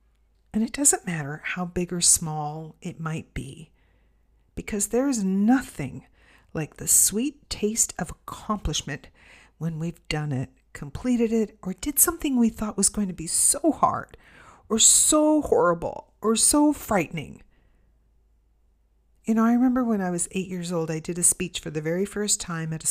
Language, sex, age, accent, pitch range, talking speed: English, female, 50-69, American, 165-220 Hz, 170 wpm